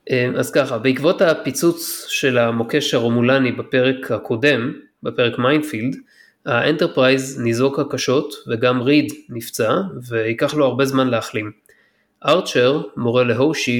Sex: male